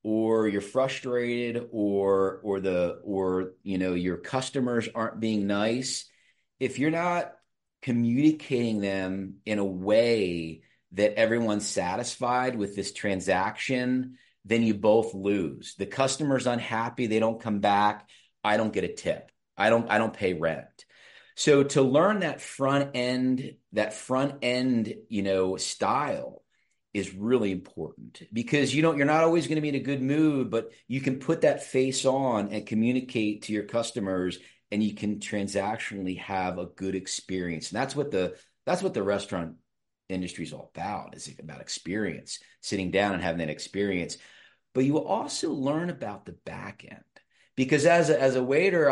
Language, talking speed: English, 165 wpm